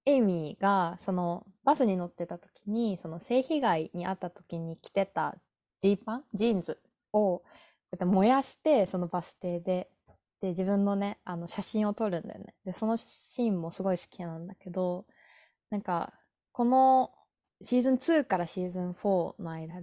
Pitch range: 180-235 Hz